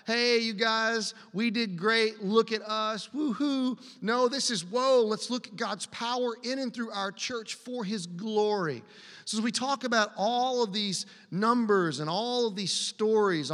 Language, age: English, 40-59